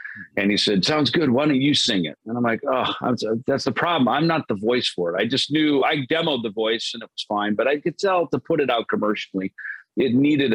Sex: male